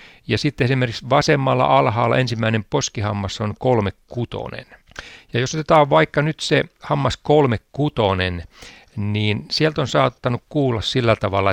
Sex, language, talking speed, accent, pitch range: male, Finnish, 135 wpm, native, 100-130 Hz